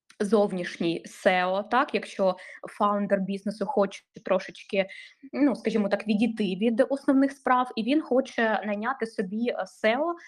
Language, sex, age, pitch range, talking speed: Ukrainian, female, 20-39, 200-250 Hz, 125 wpm